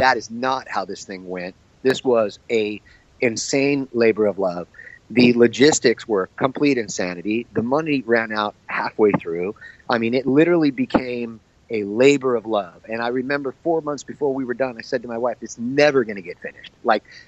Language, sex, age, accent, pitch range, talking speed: English, male, 30-49, American, 110-140 Hz, 190 wpm